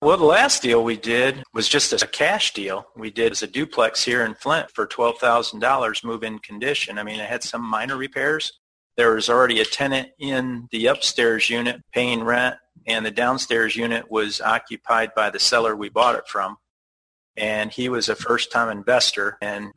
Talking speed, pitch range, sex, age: 185 wpm, 105-115 Hz, male, 40-59